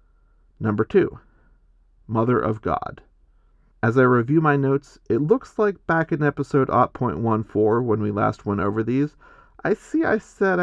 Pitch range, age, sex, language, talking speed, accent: 105-145 Hz, 40-59, male, English, 150 wpm, American